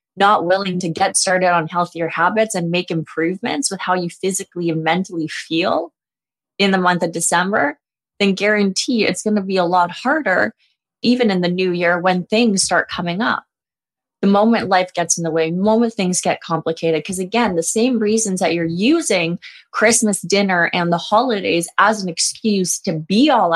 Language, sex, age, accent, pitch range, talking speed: English, female, 20-39, American, 170-215 Hz, 185 wpm